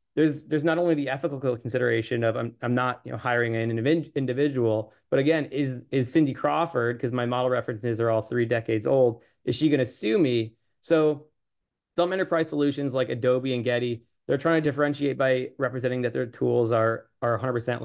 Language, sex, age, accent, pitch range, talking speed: English, male, 20-39, American, 115-135 Hz, 195 wpm